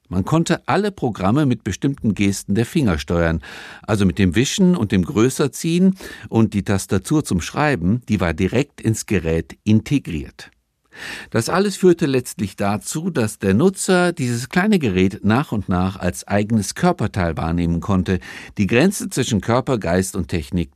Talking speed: 155 wpm